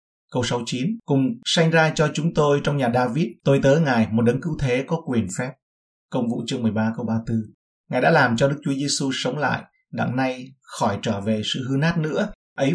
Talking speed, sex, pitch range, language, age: 215 wpm, male, 115-140 Hz, Vietnamese, 30-49